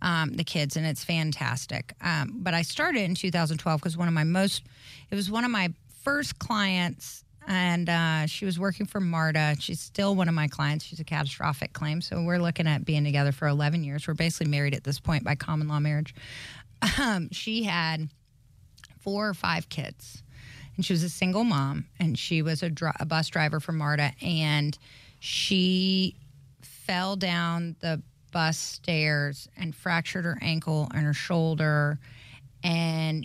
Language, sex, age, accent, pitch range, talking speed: English, female, 30-49, American, 145-180 Hz, 175 wpm